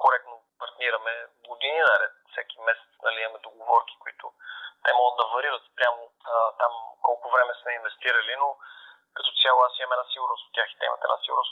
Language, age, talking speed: Bulgarian, 30-49, 190 wpm